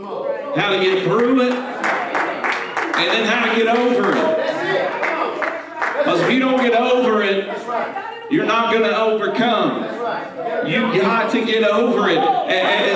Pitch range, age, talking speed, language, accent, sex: 220-250 Hz, 40-59, 145 wpm, English, American, male